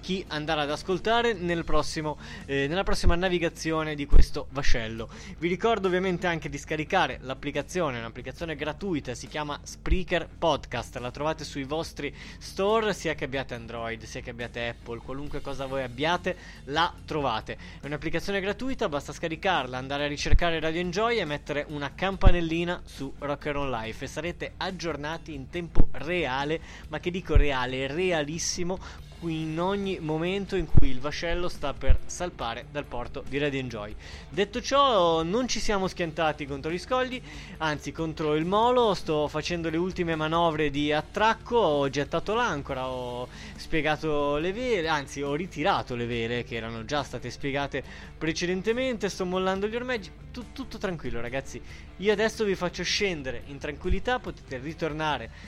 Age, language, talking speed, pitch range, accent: 20-39, Italian, 155 wpm, 140-180 Hz, native